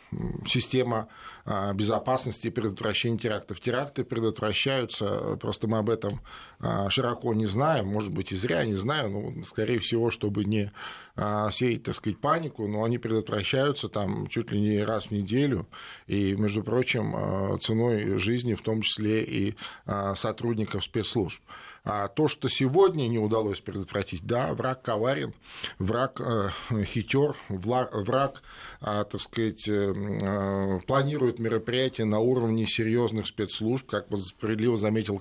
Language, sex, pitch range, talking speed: Russian, male, 105-125 Hz, 125 wpm